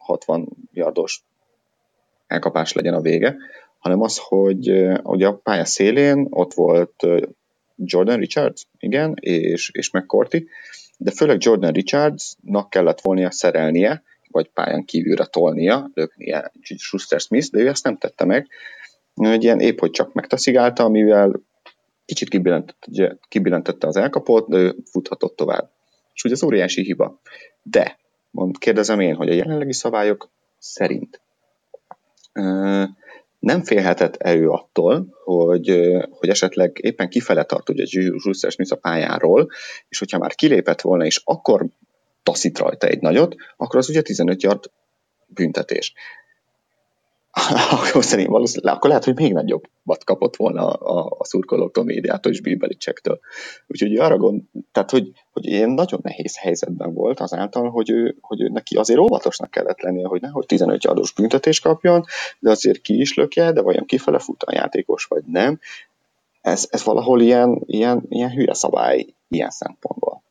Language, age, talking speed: Hungarian, 30-49, 145 wpm